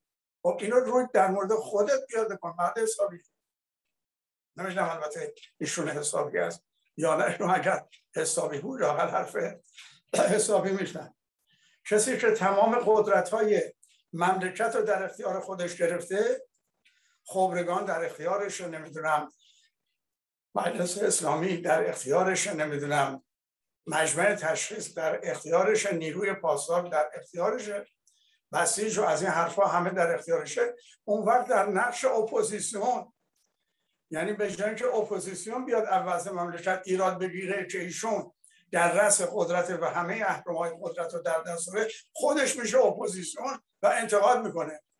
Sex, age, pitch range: male, 60-79, 175-230 Hz